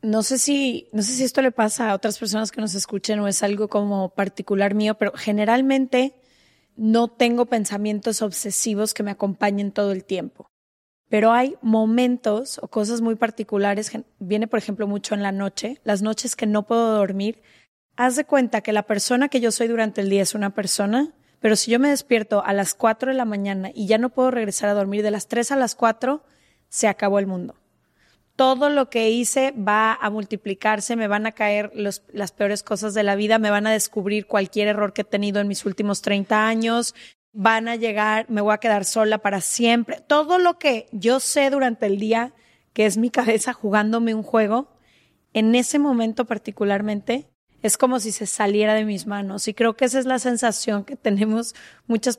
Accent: Mexican